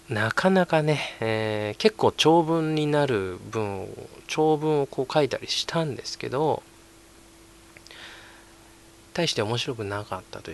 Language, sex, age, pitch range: Japanese, male, 20-39, 105-130 Hz